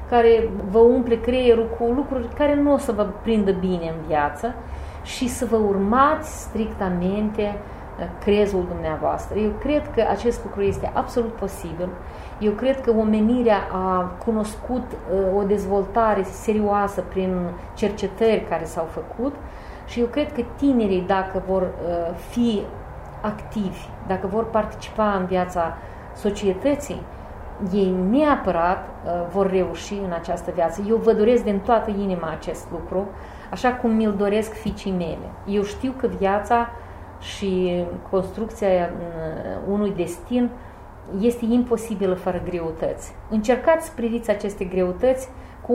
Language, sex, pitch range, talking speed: Romanian, female, 185-235 Hz, 130 wpm